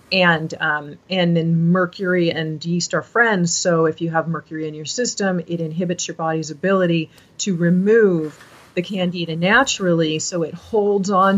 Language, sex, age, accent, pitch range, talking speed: English, female, 40-59, American, 165-210 Hz, 165 wpm